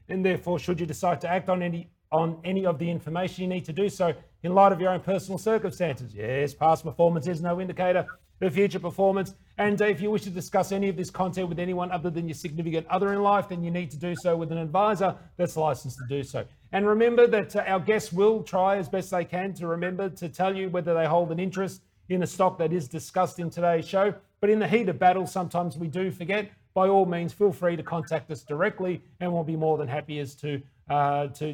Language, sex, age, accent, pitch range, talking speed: English, male, 30-49, Australian, 155-190 Hz, 240 wpm